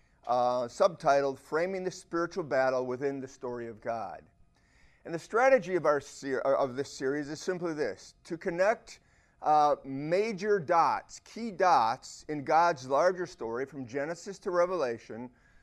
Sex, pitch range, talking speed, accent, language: male, 135-180 Hz, 145 wpm, American, English